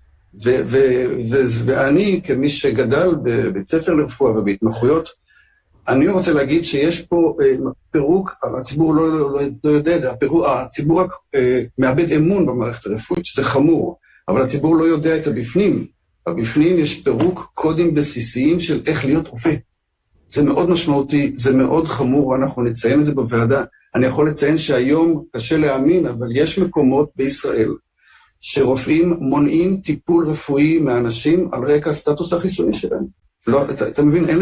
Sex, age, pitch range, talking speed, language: male, 50-69, 135-170 Hz, 150 wpm, Hebrew